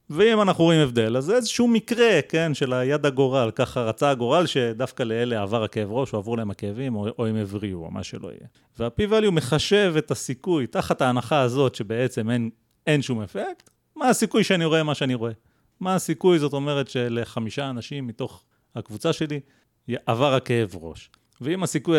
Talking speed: 175 wpm